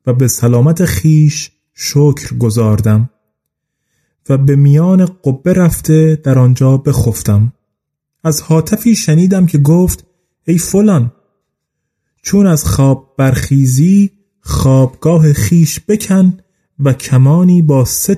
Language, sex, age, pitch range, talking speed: Persian, male, 30-49, 130-165 Hz, 110 wpm